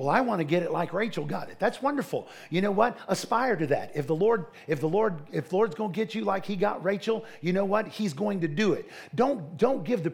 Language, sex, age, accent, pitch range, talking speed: English, male, 50-69, American, 155-205 Hz, 280 wpm